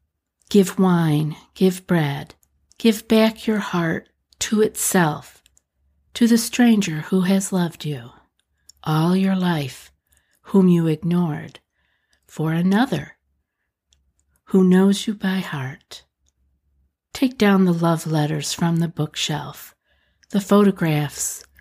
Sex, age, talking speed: female, 50-69, 110 wpm